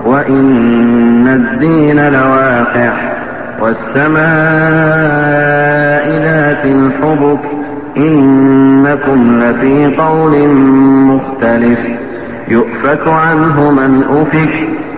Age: 50-69